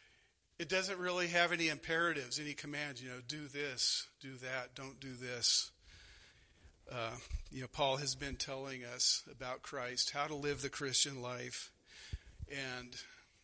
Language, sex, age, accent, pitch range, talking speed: English, male, 40-59, American, 130-160 Hz, 150 wpm